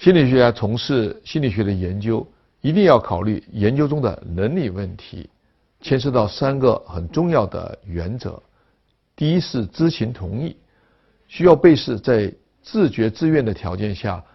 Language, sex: Chinese, male